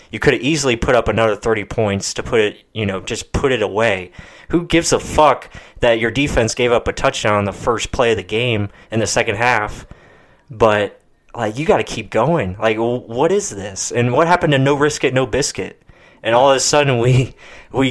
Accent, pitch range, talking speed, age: American, 105-125 Hz, 225 wpm, 20-39